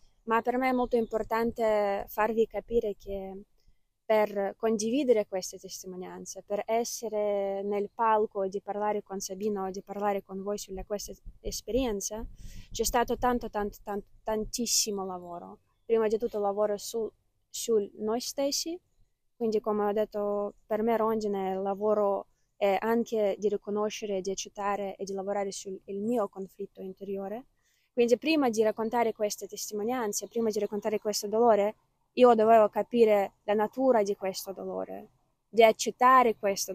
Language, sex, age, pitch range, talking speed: Italian, female, 20-39, 195-225 Hz, 145 wpm